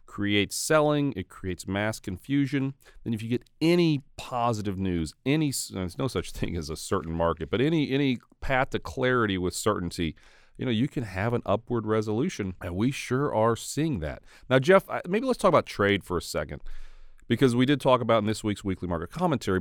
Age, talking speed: 40-59, 200 wpm